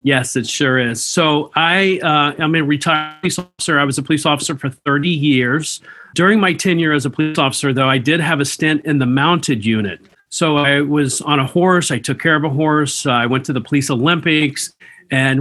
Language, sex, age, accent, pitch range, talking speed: English, male, 40-59, American, 130-155 Hz, 225 wpm